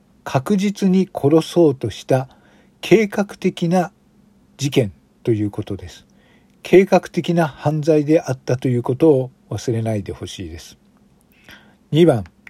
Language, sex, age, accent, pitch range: Japanese, male, 50-69, native, 120-180 Hz